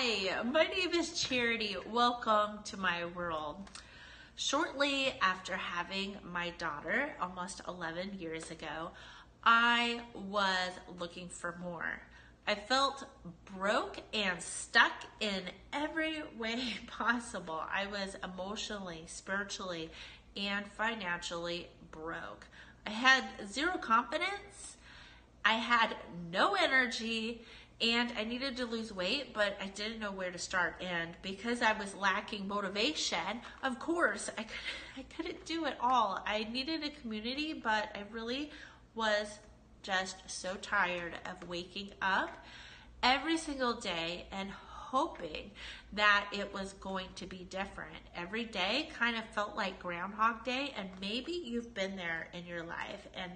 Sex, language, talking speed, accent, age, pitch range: female, English, 130 wpm, American, 30-49, 185-240 Hz